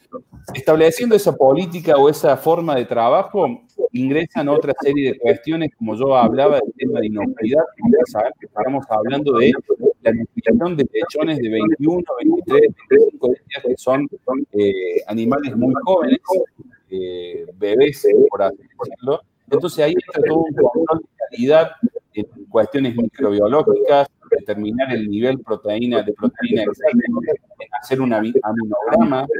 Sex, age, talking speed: male, 40-59, 130 wpm